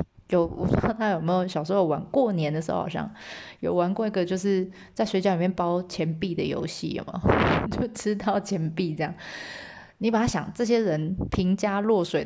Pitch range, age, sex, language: 175-215 Hz, 20-39, female, Chinese